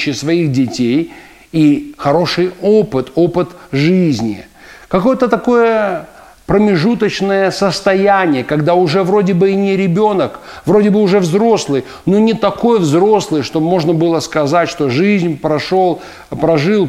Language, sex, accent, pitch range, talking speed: Russian, male, native, 155-200 Hz, 120 wpm